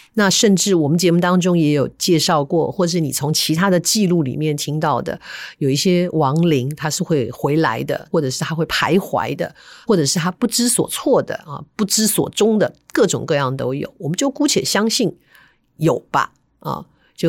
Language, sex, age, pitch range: Chinese, female, 50-69, 145-185 Hz